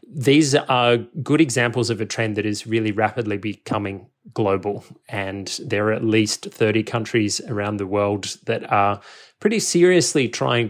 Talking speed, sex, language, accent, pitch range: 155 wpm, male, English, Australian, 110-125 Hz